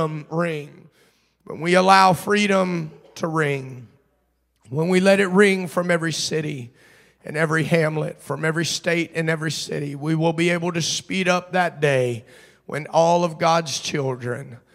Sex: male